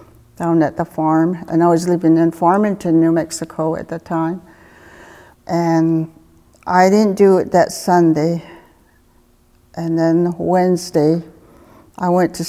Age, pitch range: 60-79, 160-180 Hz